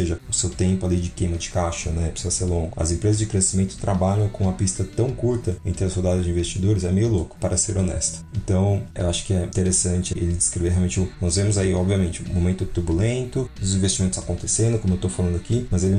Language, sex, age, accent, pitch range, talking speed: Portuguese, male, 30-49, Brazilian, 90-105 Hz, 235 wpm